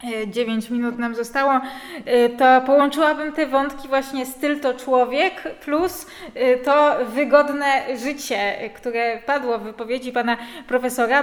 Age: 20-39